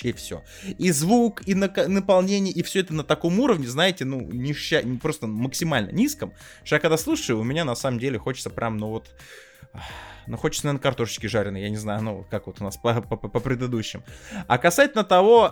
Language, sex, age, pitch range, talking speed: Russian, male, 20-39, 115-160 Hz, 195 wpm